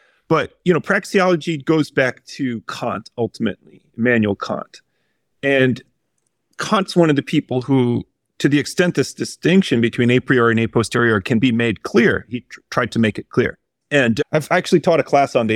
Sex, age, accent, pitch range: male, 40-59, American, 125-175 Hz